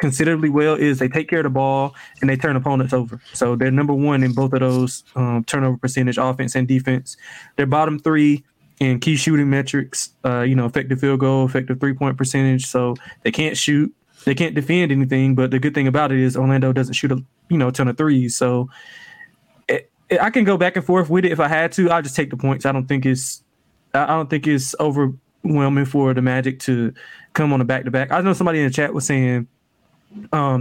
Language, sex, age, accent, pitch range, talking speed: English, male, 20-39, American, 130-150 Hz, 230 wpm